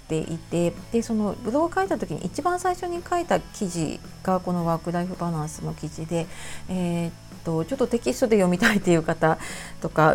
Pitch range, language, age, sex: 165-215 Hz, Japanese, 40-59, female